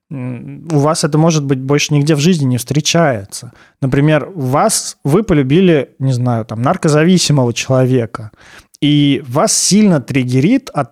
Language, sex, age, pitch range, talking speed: Russian, male, 20-39, 135-165 Hz, 135 wpm